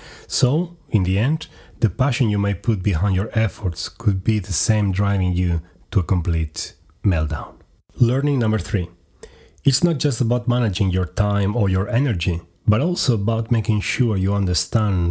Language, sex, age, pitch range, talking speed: English, male, 30-49, 95-120 Hz, 165 wpm